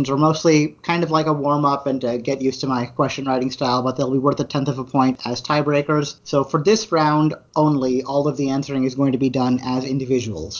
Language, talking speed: English, 245 wpm